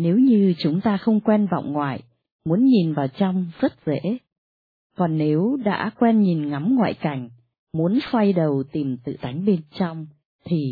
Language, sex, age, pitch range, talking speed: Vietnamese, female, 20-39, 140-205 Hz, 175 wpm